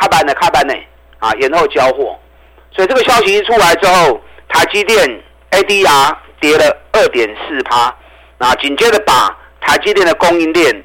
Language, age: Chinese, 50-69